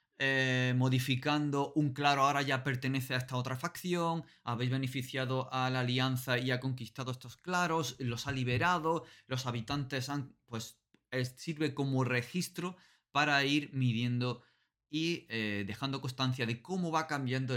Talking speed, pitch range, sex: 145 wpm, 115-145 Hz, male